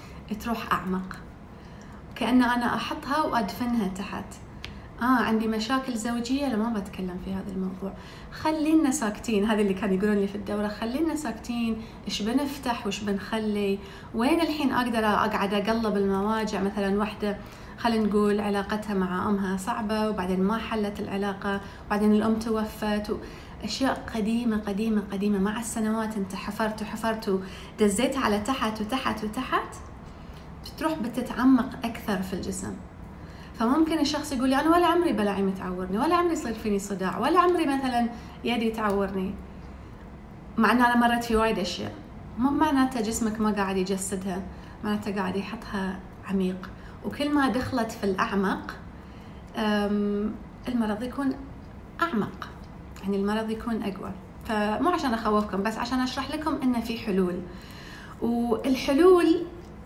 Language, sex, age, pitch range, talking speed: English, female, 30-49, 205-245 Hz, 130 wpm